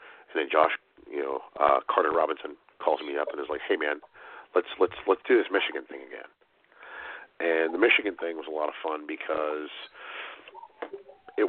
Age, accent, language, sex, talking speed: 40-59, American, English, male, 185 wpm